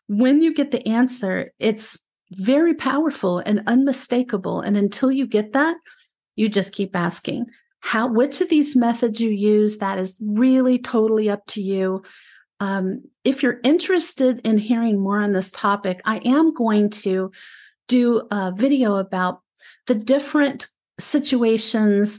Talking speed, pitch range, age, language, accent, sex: 145 wpm, 195-250 Hz, 50-69, English, American, female